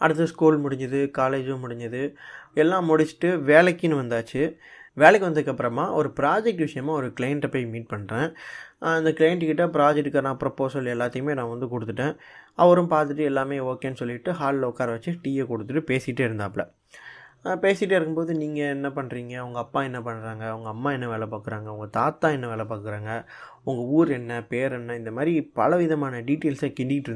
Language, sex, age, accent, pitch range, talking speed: Tamil, male, 20-39, native, 125-160 Hz, 150 wpm